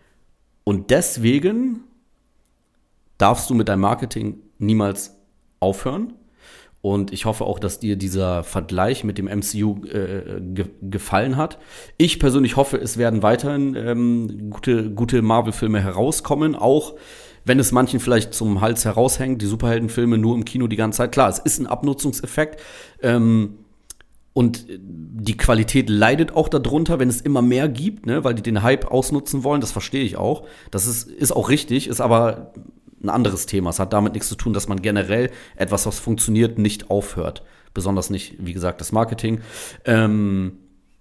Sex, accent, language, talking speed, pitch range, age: male, German, German, 160 wpm, 100-130 Hz, 40-59